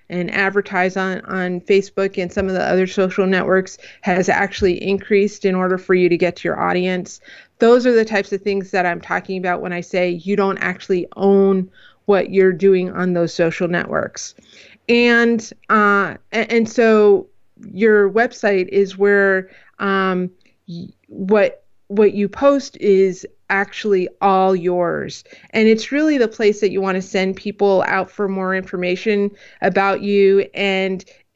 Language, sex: English, female